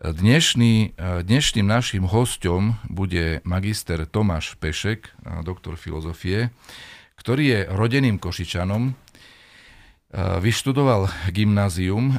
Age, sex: 50-69, male